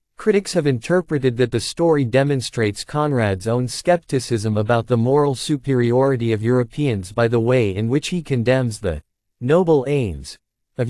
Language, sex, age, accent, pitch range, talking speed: English, male, 50-69, American, 115-150 Hz, 150 wpm